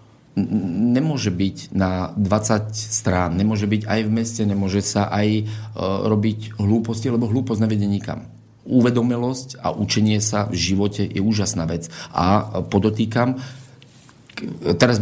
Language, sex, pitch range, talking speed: Slovak, male, 100-115 Hz, 125 wpm